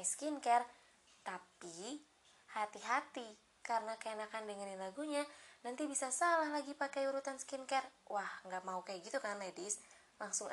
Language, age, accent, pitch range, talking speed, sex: Indonesian, 20-39, native, 190-270 Hz, 125 wpm, female